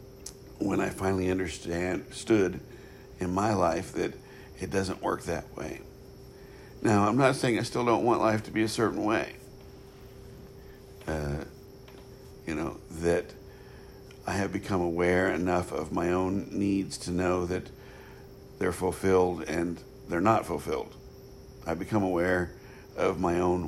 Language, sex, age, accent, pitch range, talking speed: English, male, 60-79, American, 90-110 Hz, 140 wpm